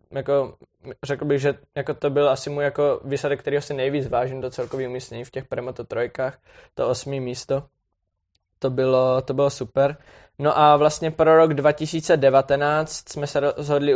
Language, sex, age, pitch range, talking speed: Czech, male, 20-39, 130-145 Hz, 165 wpm